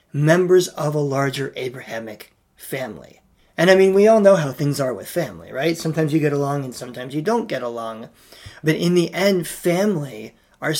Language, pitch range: English, 135-170 Hz